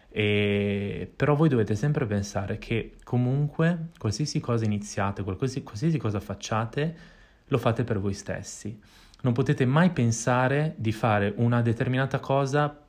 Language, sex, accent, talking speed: Italian, male, native, 130 wpm